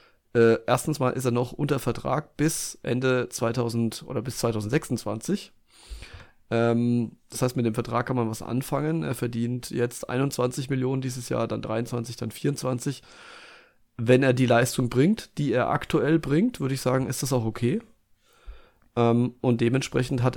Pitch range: 115-130 Hz